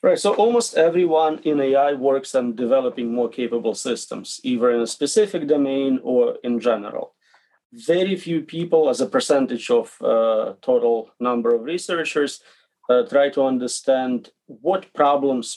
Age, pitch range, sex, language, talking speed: 40-59, 120-160 Hz, male, English, 145 wpm